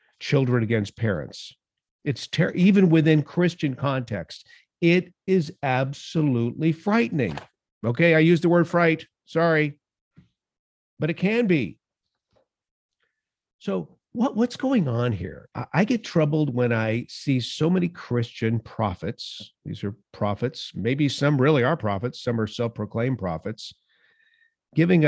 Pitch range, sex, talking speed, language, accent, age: 105-155 Hz, male, 125 wpm, English, American, 50-69